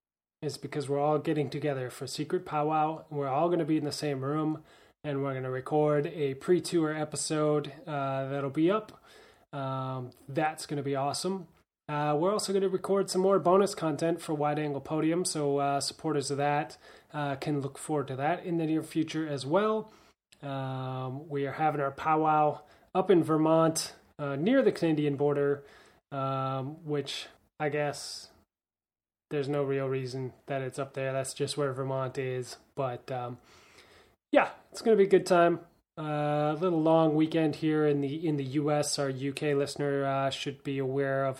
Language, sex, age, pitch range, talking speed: English, male, 20-39, 140-160 Hz, 185 wpm